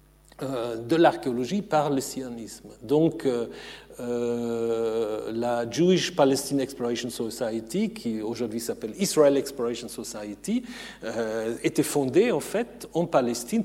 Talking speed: 105 wpm